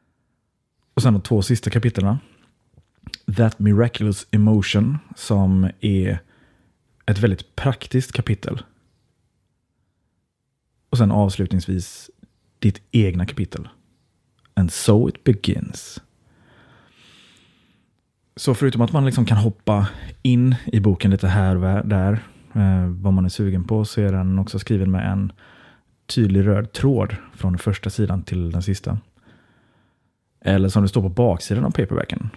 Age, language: 30-49, Swedish